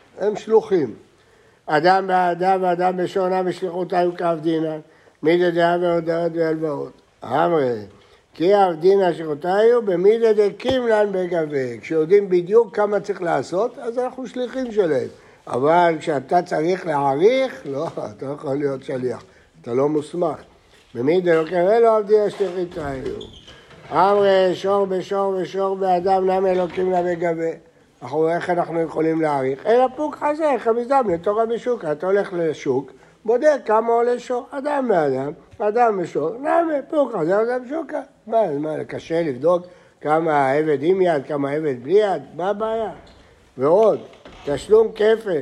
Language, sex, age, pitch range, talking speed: Hebrew, male, 60-79, 165-220 Hz, 125 wpm